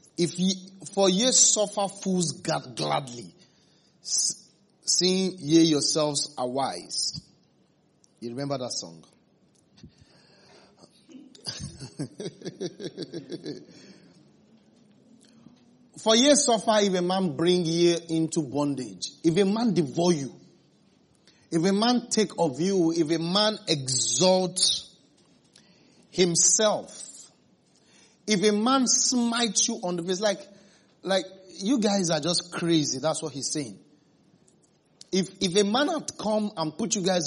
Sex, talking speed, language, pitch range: male, 115 wpm, English, 155-200 Hz